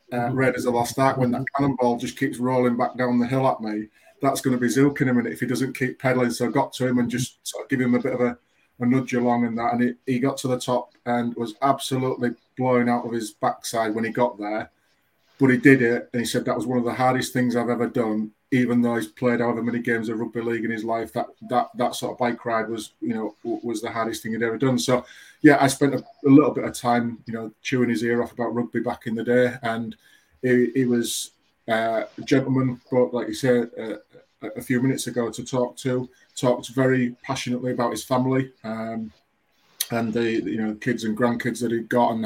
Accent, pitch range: British, 115-125 Hz